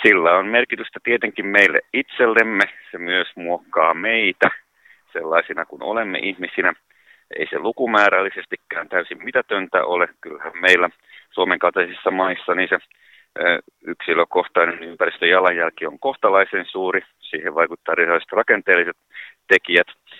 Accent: native